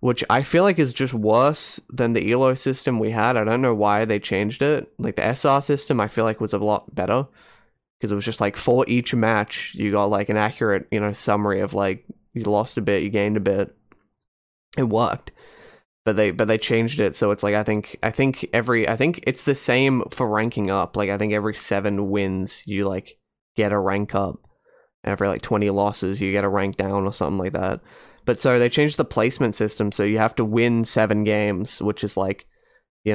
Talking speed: 225 wpm